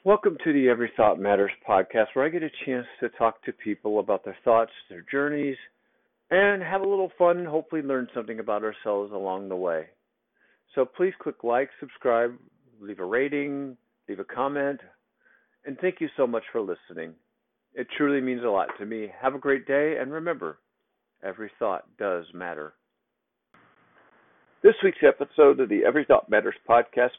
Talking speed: 175 wpm